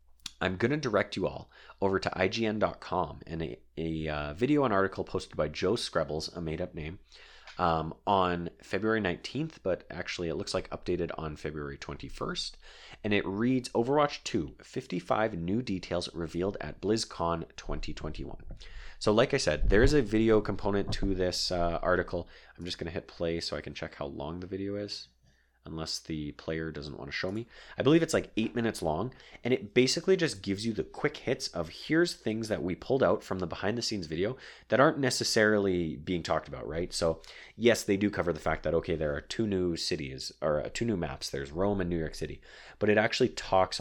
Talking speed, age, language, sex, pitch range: 200 wpm, 30-49, English, male, 80-105 Hz